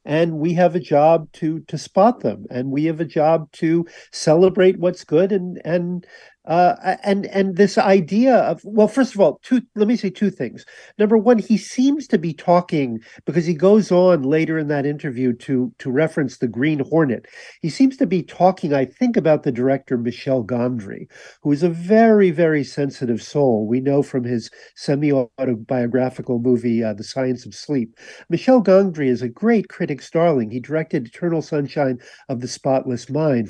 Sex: male